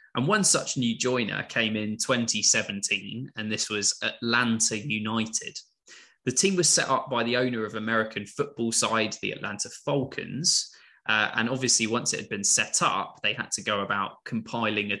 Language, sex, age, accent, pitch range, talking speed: English, male, 20-39, British, 110-145 Hz, 175 wpm